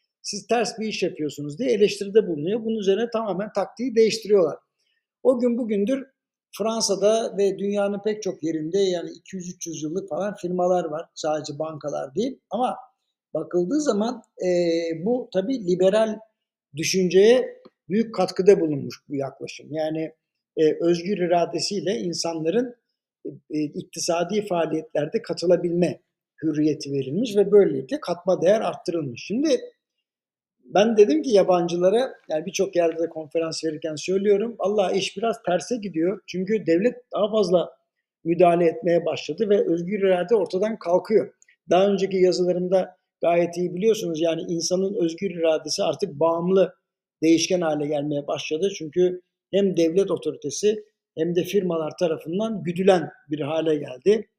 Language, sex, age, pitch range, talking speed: Turkish, male, 60-79, 165-215 Hz, 130 wpm